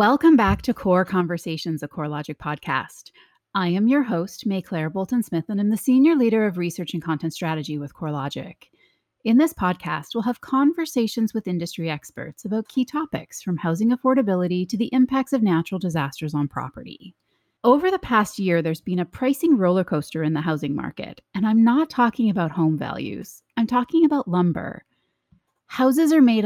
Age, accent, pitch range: 30-49, American, 165-240 Hz